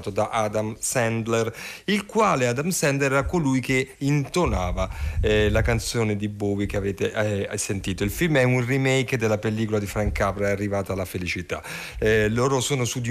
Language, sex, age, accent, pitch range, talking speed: Italian, male, 40-59, native, 105-140 Hz, 180 wpm